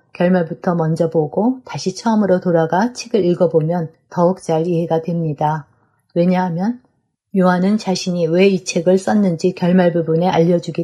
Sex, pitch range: female, 165-195 Hz